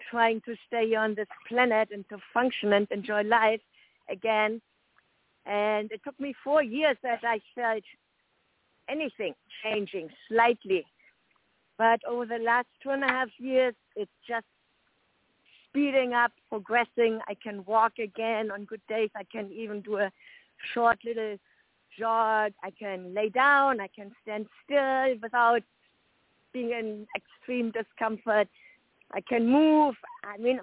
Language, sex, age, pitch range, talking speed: English, female, 50-69, 210-250 Hz, 140 wpm